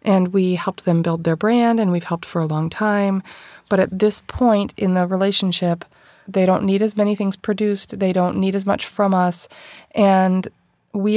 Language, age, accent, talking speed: English, 30-49, American, 200 wpm